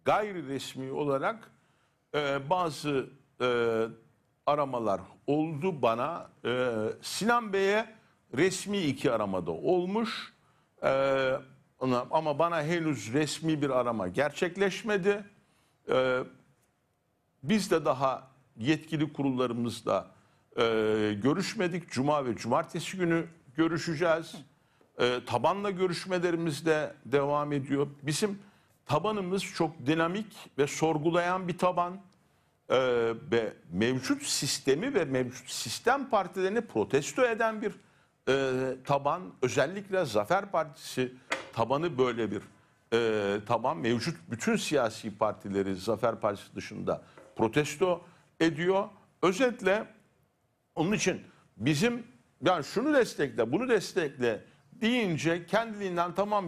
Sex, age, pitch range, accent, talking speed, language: male, 60-79, 130-185 Hz, native, 100 wpm, Turkish